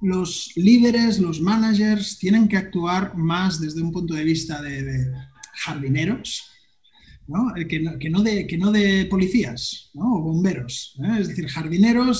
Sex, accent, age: male, Spanish, 30-49